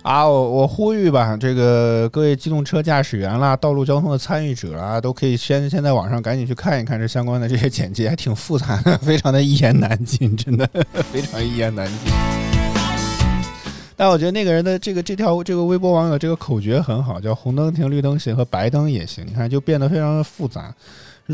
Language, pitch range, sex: Chinese, 110-160 Hz, male